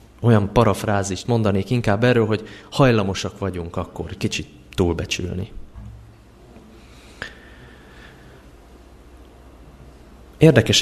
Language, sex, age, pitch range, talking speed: Hungarian, male, 20-39, 85-110 Hz, 65 wpm